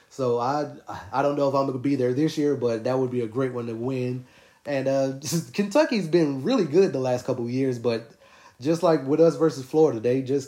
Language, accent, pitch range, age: English, American, 110-135 Hz, 30-49